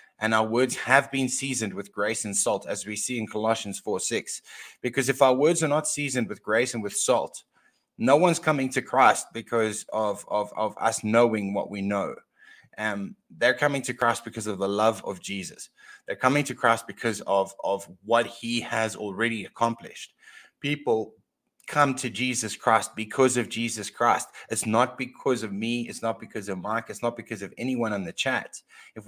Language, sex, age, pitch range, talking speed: English, male, 20-39, 105-130 Hz, 195 wpm